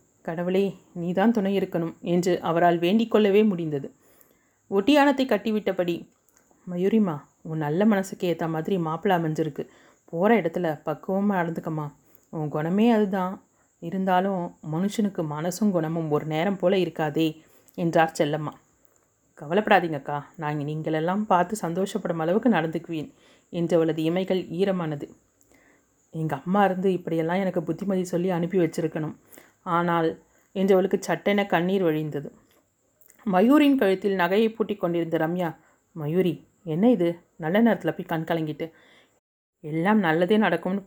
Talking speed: 115 wpm